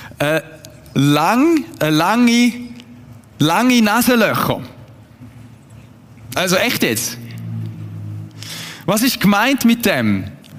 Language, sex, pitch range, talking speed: German, male, 125-210 Hz, 80 wpm